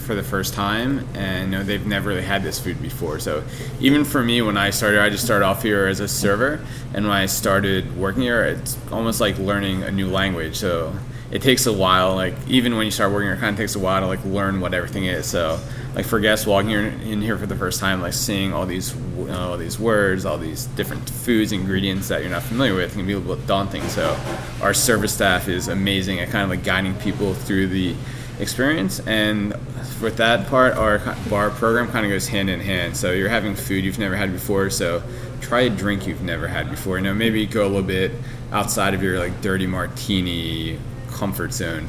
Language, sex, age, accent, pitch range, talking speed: English, male, 20-39, American, 95-120 Hz, 230 wpm